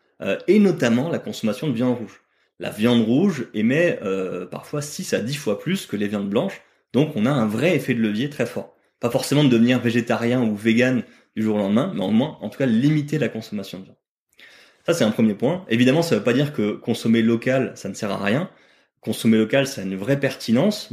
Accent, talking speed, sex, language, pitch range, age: French, 230 wpm, male, French, 105-140 Hz, 20-39